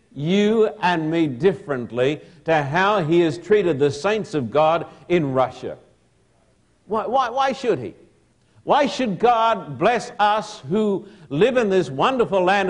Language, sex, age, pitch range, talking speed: English, male, 60-79, 155-205 Hz, 145 wpm